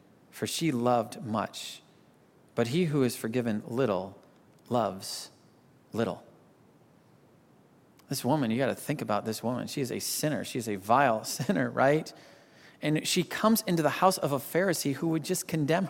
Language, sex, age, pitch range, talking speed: English, male, 40-59, 145-210 Hz, 165 wpm